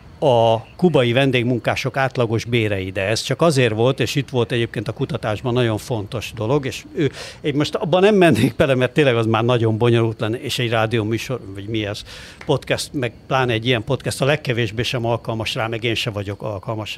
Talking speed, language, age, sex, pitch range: 200 wpm, Hungarian, 60-79, male, 115-135 Hz